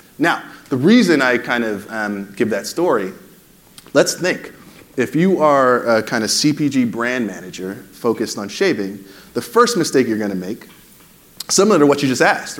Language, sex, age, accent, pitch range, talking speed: English, male, 30-49, American, 110-155 Hz, 170 wpm